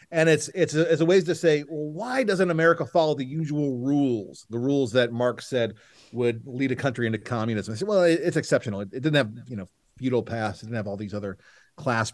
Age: 40-59